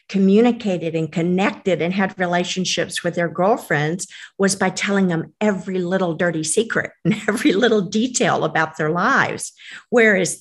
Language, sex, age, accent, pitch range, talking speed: English, female, 50-69, American, 170-205 Hz, 145 wpm